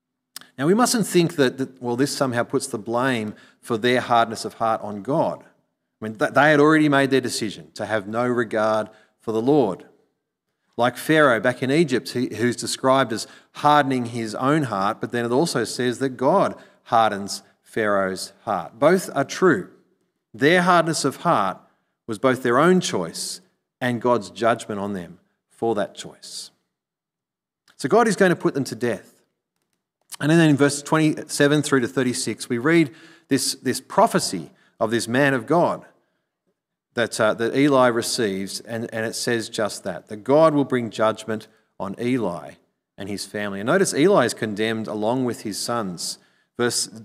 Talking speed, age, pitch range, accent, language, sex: 175 wpm, 40-59, 110-140 Hz, Australian, English, male